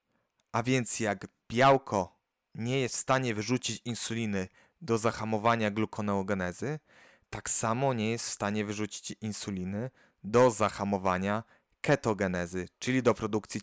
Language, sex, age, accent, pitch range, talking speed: Polish, male, 30-49, native, 100-120 Hz, 120 wpm